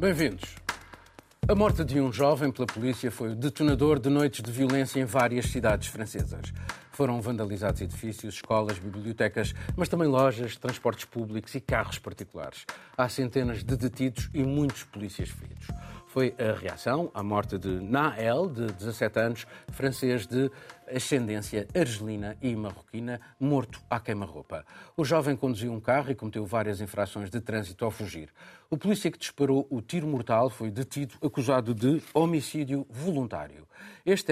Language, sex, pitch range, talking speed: Portuguese, male, 110-140 Hz, 150 wpm